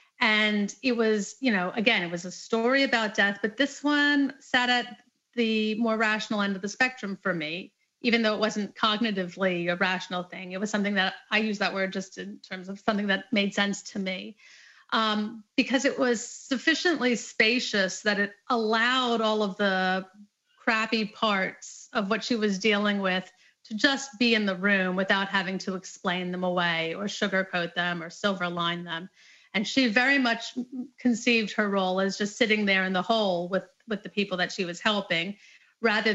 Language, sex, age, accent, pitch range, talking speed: English, female, 30-49, American, 195-230 Hz, 190 wpm